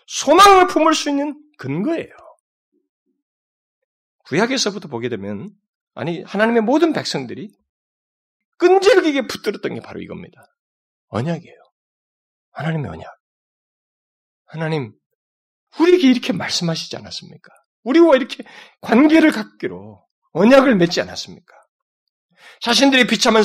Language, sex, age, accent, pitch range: Korean, male, 40-59, native, 205-310 Hz